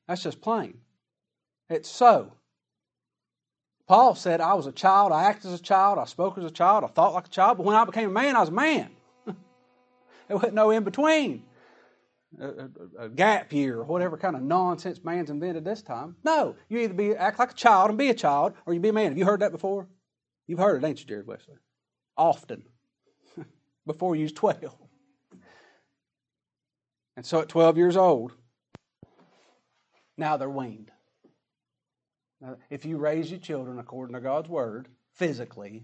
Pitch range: 135-195 Hz